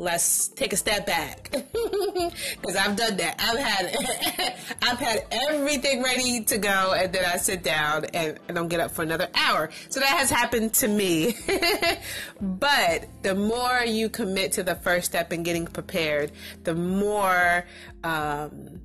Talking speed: 160 wpm